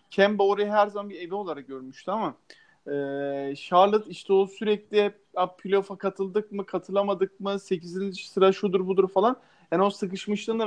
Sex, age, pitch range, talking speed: male, 40-59, 165-210 Hz, 155 wpm